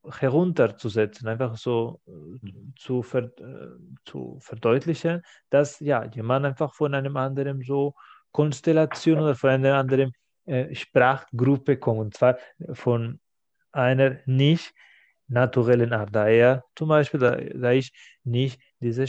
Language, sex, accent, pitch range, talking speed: German, male, German, 120-145 Hz, 120 wpm